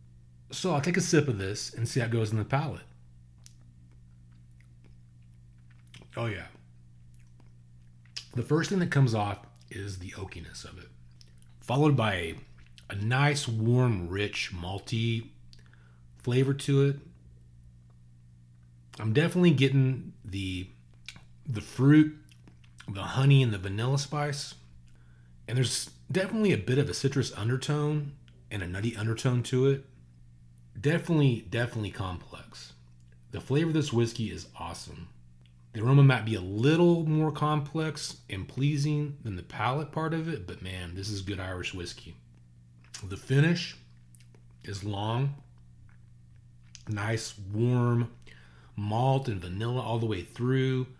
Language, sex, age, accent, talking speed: English, male, 30-49, American, 130 wpm